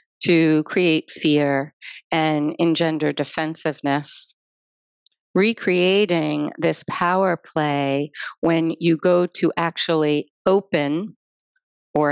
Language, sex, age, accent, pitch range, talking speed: English, female, 40-59, American, 150-175 Hz, 85 wpm